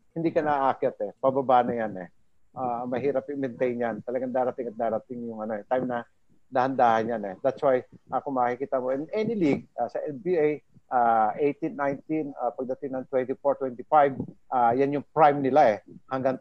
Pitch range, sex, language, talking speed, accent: 125-150 Hz, male, English, 180 wpm, Filipino